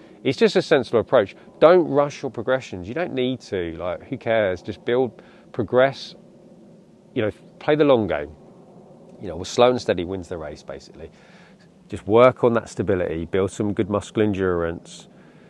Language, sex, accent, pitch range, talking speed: English, male, British, 90-125 Hz, 170 wpm